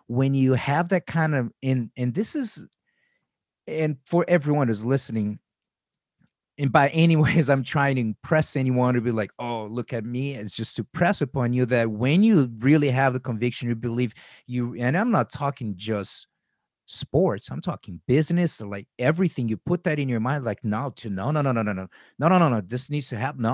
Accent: American